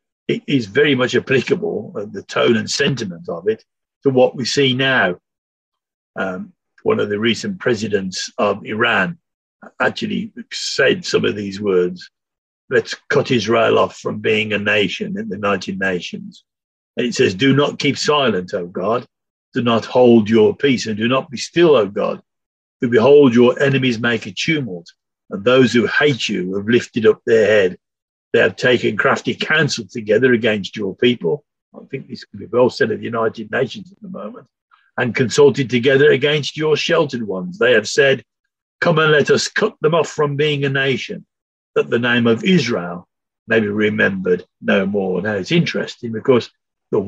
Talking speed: 175 wpm